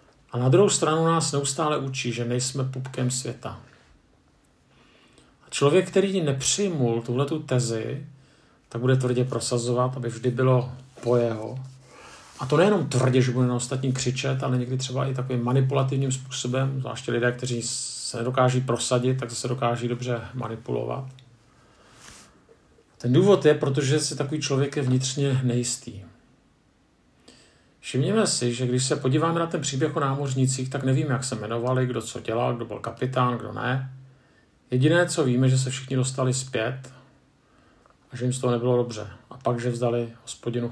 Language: Czech